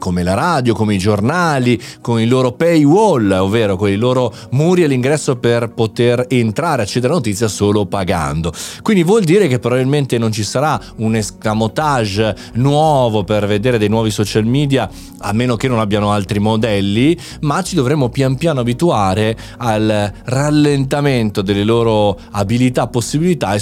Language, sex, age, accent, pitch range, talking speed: Italian, male, 30-49, native, 105-150 Hz, 160 wpm